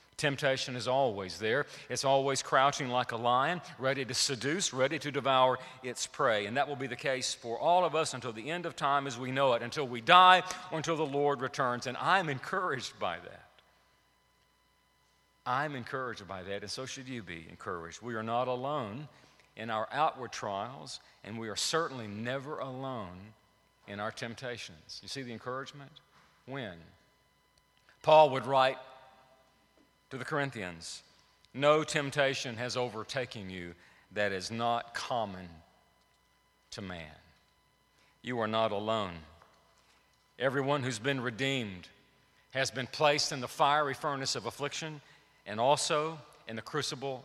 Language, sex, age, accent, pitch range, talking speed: English, male, 50-69, American, 115-150 Hz, 155 wpm